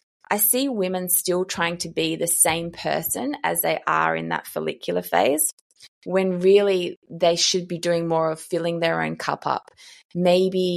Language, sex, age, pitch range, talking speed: English, female, 20-39, 165-195 Hz, 175 wpm